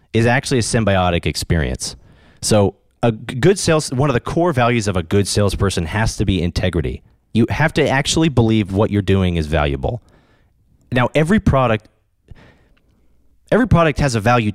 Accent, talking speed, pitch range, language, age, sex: American, 165 wpm, 90-130 Hz, English, 30-49, male